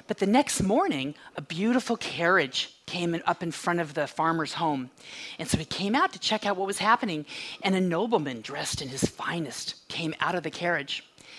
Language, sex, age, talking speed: English, female, 40-59, 200 wpm